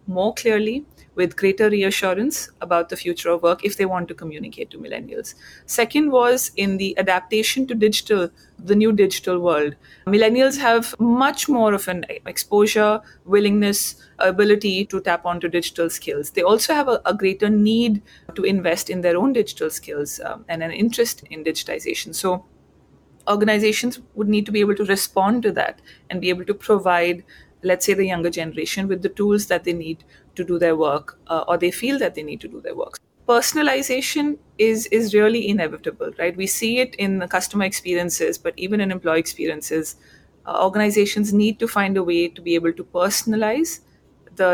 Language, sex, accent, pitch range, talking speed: English, female, Indian, 175-220 Hz, 180 wpm